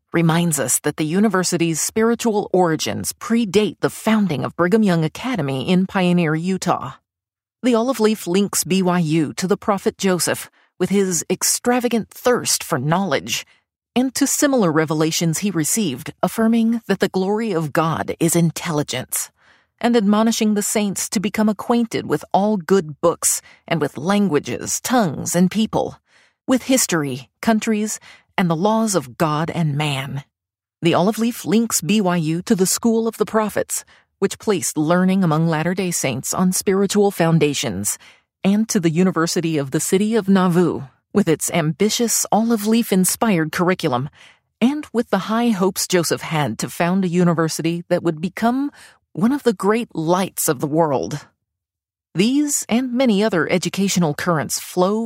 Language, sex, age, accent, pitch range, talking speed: English, female, 40-59, American, 160-220 Hz, 150 wpm